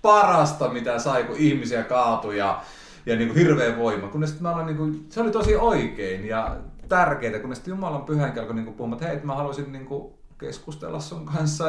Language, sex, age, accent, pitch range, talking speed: Finnish, male, 30-49, native, 110-155 Hz, 205 wpm